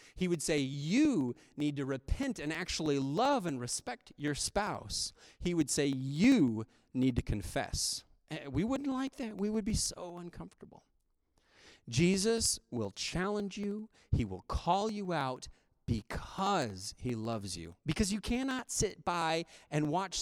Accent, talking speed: American, 150 wpm